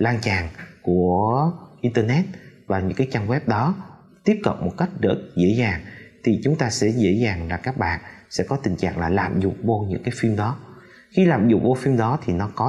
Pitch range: 105-150 Hz